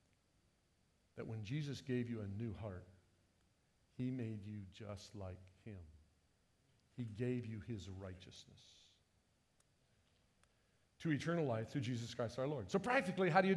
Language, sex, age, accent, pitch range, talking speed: English, male, 50-69, American, 120-190 Hz, 140 wpm